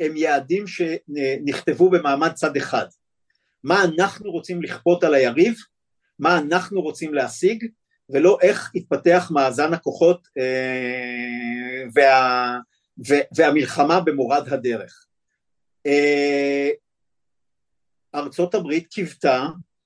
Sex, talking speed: male, 90 wpm